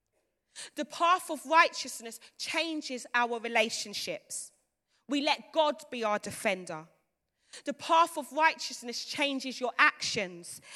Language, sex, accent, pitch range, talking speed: English, female, British, 230-300 Hz, 110 wpm